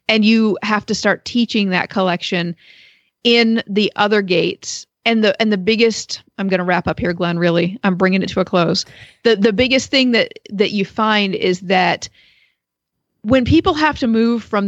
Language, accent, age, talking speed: English, American, 40-59, 190 wpm